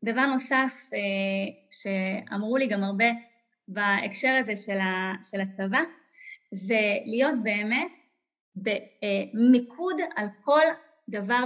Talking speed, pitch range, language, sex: 100 wpm, 215-280 Hz, Hebrew, female